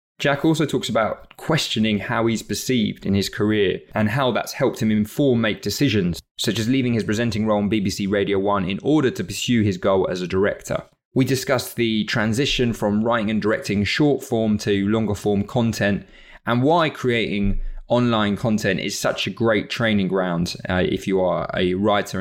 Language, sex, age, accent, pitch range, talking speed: English, male, 20-39, British, 100-125 Hz, 185 wpm